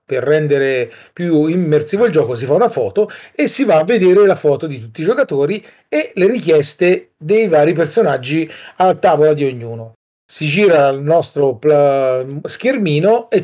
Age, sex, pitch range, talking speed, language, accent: 40-59, male, 145-210 Hz, 165 wpm, Italian, native